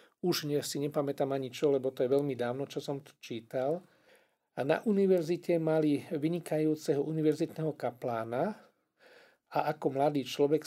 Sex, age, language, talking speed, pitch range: male, 50-69, Slovak, 135 wpm, 135-165 Hz